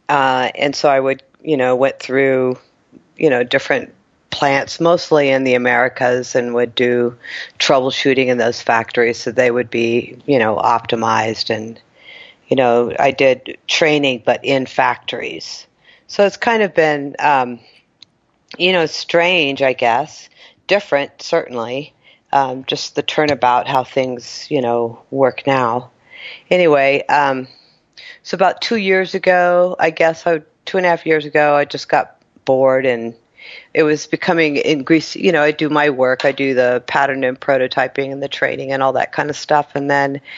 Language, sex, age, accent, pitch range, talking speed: English, female, 50-69, American, 125-150 Hz, 165 wpm